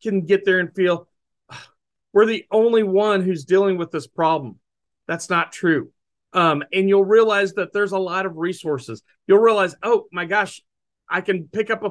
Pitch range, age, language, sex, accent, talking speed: 160-205 Hz, 40-59, English, male, American, 185 wpm